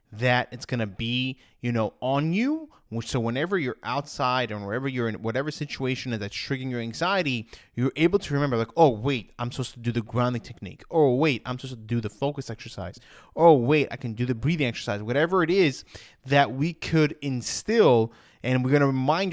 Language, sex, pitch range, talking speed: English, male, 120-160 Hz, 200 wpm